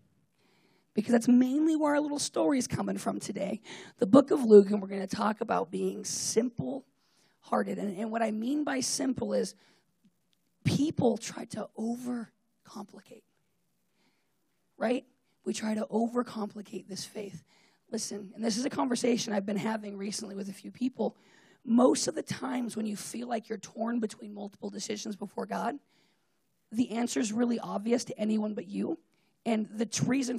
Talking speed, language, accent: 165 wpm, English, American